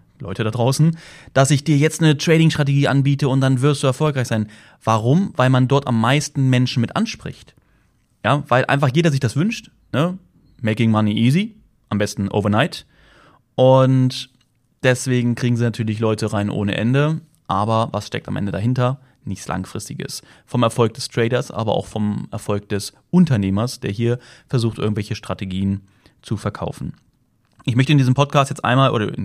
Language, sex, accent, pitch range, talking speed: German, male, German, 115-145 Hz, 165 wpm